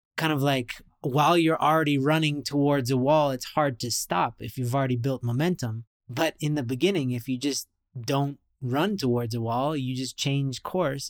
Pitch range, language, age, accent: 125-155 Hz, English, 20-39, American